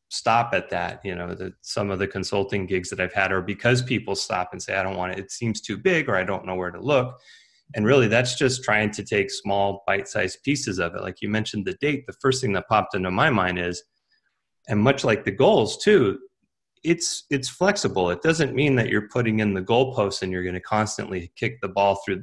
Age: 30-49